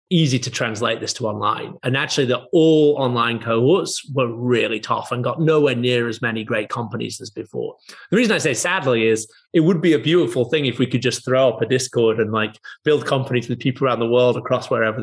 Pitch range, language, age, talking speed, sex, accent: 120-165 Hz, English, 30-49, 225 wpm, male, British